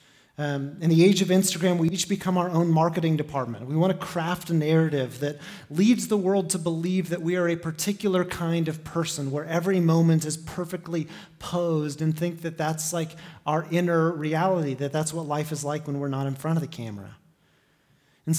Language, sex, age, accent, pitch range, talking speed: English, male, 30-49, American, 155-190 Hz, 200 wpm